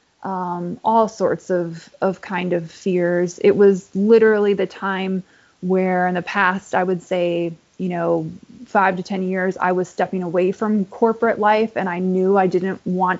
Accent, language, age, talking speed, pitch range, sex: American, English, 20-39, 175 wpm, 185-205 Hz, female